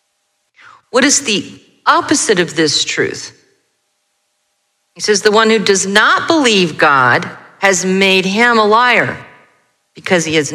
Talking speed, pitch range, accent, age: 135 wpm, 175-235 Hz, American, 40-59